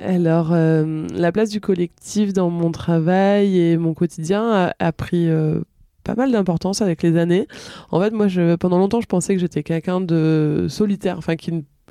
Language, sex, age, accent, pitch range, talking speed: French, female, 20-39, French, 160-190 Hz, 185 wpm